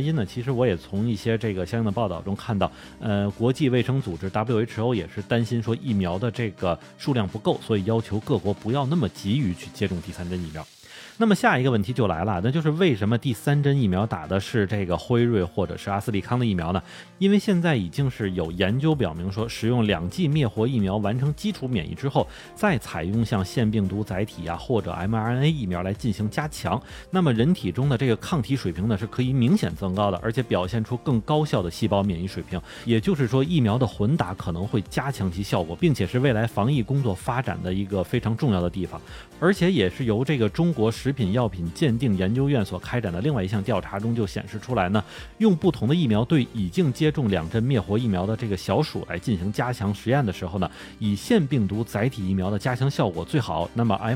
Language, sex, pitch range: Chinese, male, 100-135 Hz